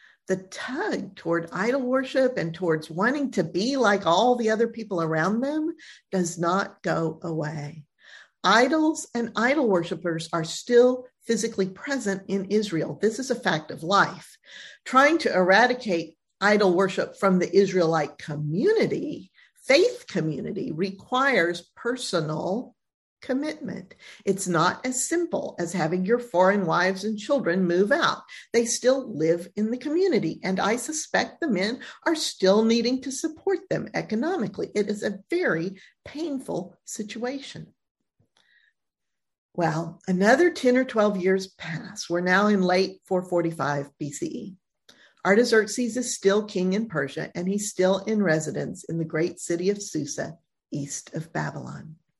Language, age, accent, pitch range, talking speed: English, 50-69, American, 175-245 Hz, 140 wpm